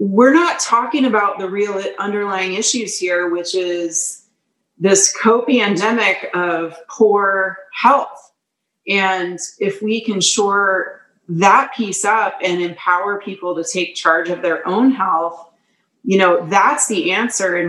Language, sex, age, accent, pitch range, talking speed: English, female, 30-49, American, 175-225 Hz, 140 wpm